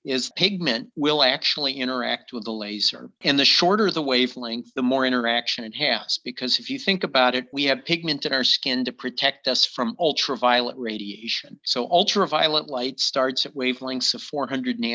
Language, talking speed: English, 175 wpm